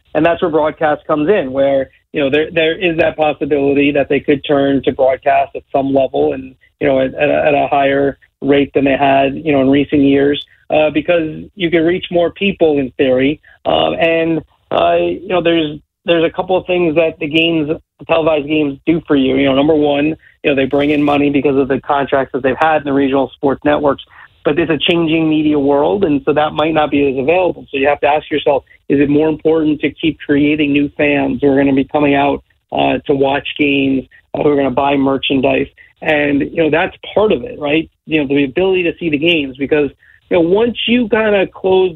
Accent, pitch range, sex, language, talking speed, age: American, 140-160 Hz, male, English, 235 wpm, 30-49